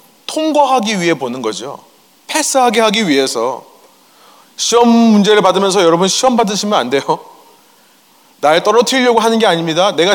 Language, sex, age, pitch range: Korean, male, 30-49, 175-255 Hz